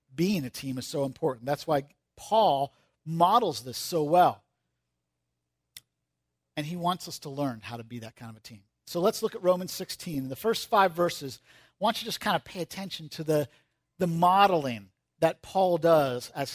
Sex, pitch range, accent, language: male, 125-180 Hz, American, English